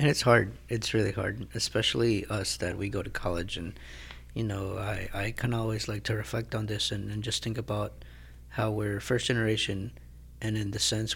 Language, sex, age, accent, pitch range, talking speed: English, male, 20-39, American, 95-110 Hz, 205 wpm